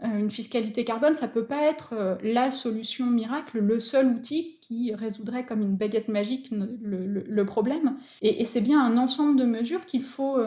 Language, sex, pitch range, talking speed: French, female, 215-260 Hz, 195 wpm